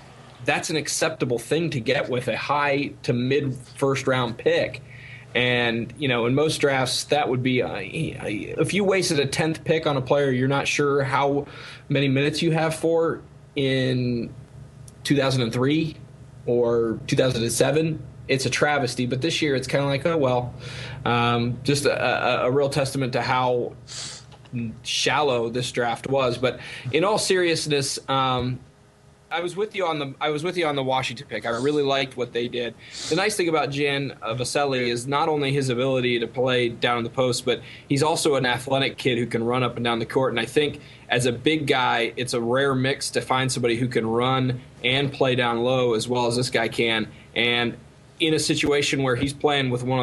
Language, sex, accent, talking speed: English, male, American, 195 wpm